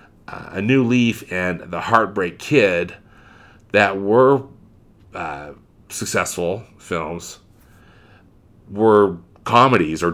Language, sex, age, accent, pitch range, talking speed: English, male, 40-59, American, 85-105 Hz, 95 wpm